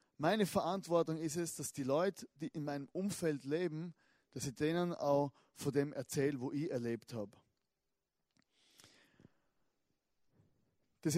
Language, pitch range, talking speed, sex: German, 145-180 Hz, 130 wpm, male